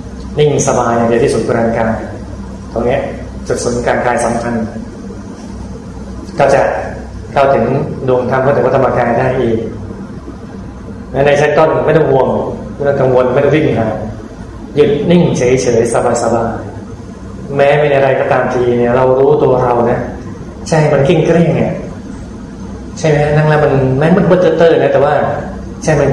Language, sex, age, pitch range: Thai, male, 20-39, 115-145 Hz